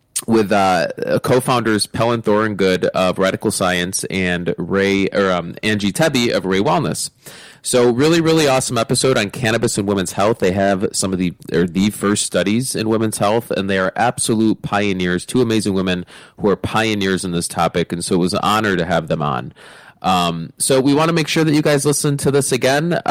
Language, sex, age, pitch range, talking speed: English, male, 20-39, 100-125 Hz, 205 wpm